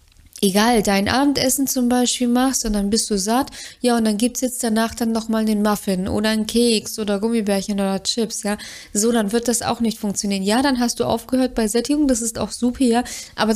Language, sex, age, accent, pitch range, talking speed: German, female, 20-39, German, 210-240 Hz, 220 wpm